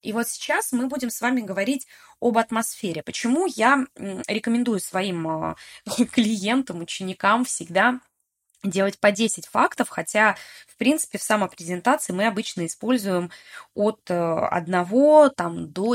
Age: 20-39